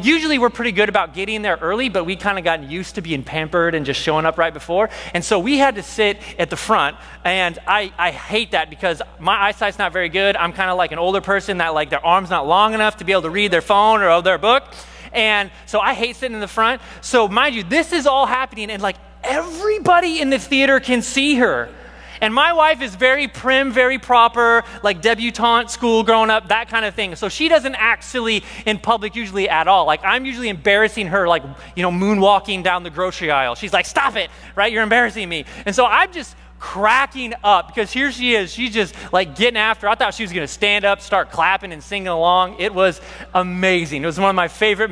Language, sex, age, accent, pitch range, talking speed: English, male, 30-49, American, 175-235 Hz, 235 wpm